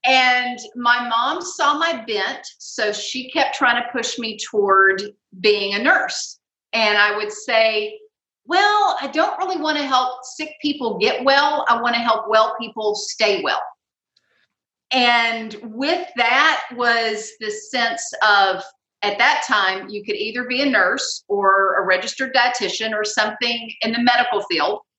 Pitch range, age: 210-270 Hz, 40-59